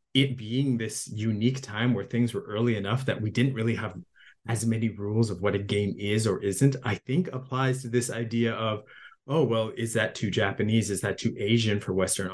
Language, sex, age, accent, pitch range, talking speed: English, male, 30-49, American, 105-125 Hz, 215 wpm